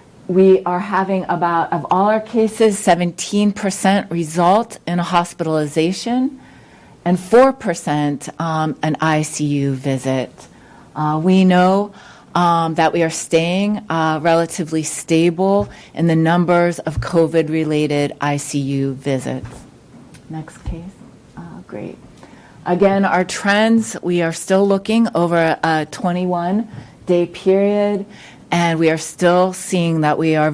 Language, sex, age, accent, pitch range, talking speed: English, female, 40-59, American, 160-190 Hz, 120 wpm